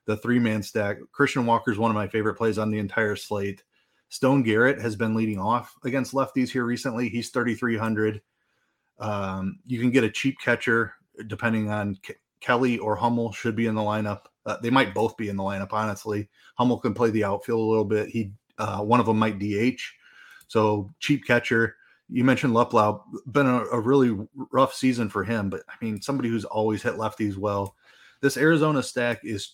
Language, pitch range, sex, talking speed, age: English, 105-125 Hz, male, 195 wpm, 30-49